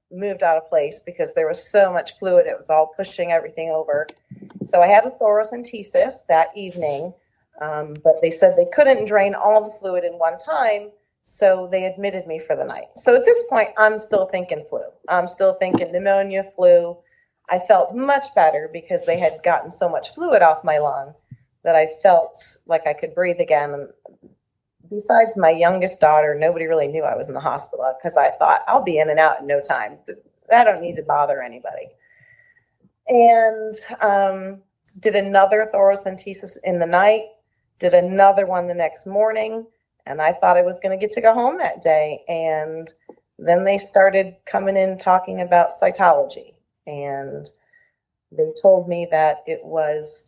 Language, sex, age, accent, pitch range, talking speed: English, female, 40-59, American, 160-220 Hz, 180 wpm